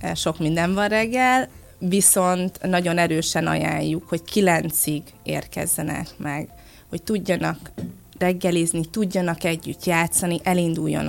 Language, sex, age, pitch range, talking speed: Hungarian, female, 20-39, 155-185 Hz, 105 wpm